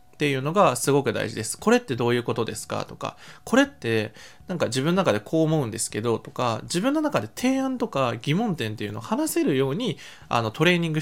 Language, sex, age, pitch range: Japanese, male, 20-39, 110-175 Hz